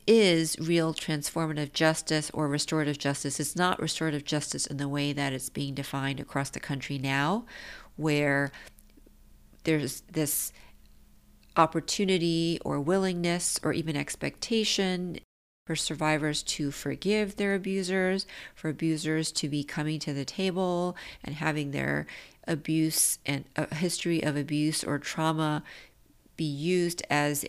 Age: 40-59